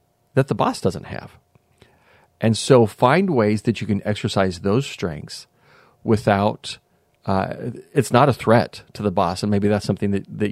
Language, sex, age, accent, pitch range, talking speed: English, male, 40-59, American, 100-125 Hz, 170 wpm